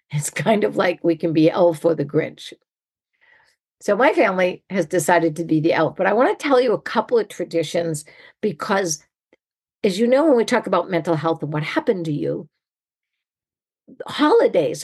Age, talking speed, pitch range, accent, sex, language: 50-69, 185 wpm, 160-215 Hz, American, female, English